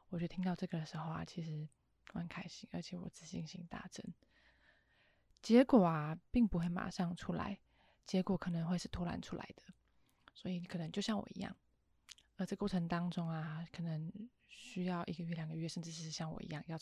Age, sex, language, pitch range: 20-39, female, Chinese, 170-195 Hz